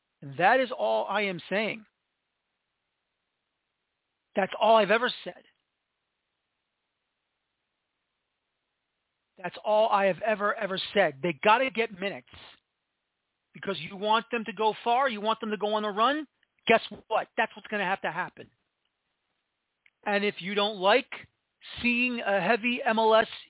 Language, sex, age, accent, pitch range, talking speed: English, male, 40-59, American, 205-265 Hz, 145 wpm